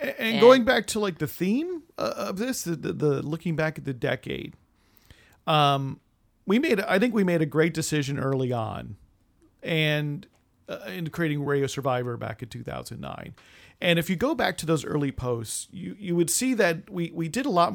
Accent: American